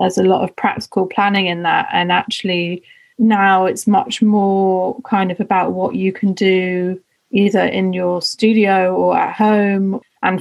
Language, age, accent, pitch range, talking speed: German, 30-49, British, 190-225 Hz, 165 wpm